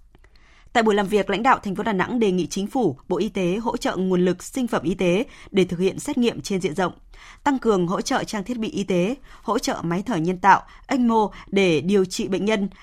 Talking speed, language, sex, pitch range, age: 255 wpm, Vietnamese, female, 180-230 Hz, 20-39